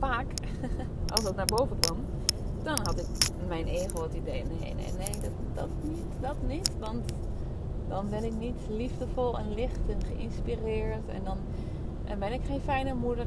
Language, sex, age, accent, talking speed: Dutch, female, 20-39, Dutch, 170 wpm